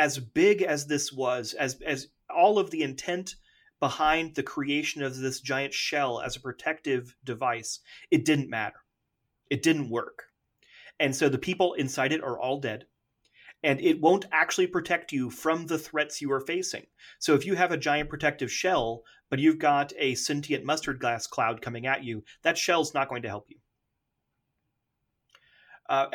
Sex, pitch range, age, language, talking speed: male, 130-155 Hz, 30-49, English, 175 wpm